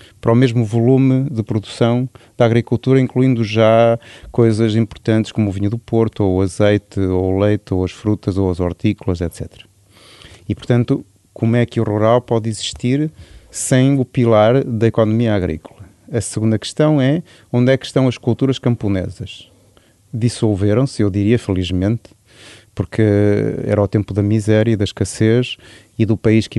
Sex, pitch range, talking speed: male, 105-125 Hz, 165 wpm